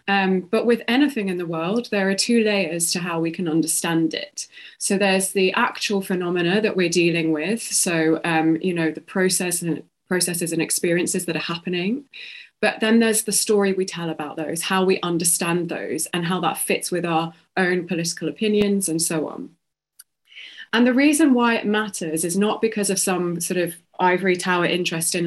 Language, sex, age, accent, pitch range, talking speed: English, female, 20-39, British, 165-210 Hz, 190 wpm